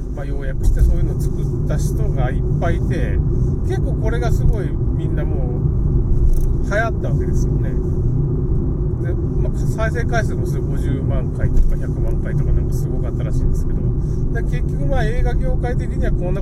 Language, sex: Japanese, male